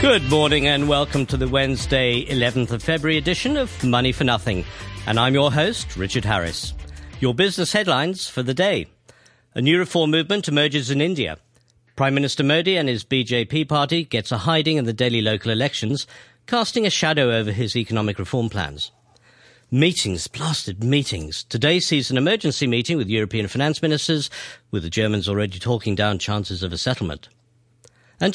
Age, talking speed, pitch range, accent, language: 50-69, 170 wpm, 110-150 Hz, British, English